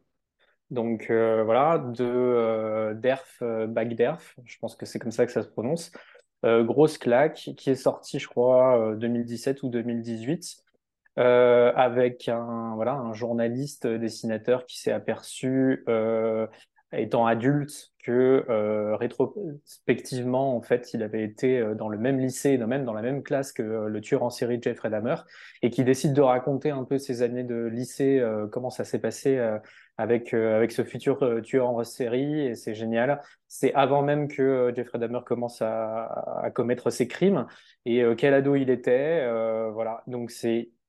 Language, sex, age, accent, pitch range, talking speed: French, male, 20-39, French, 115-135 Hz, 180 wpm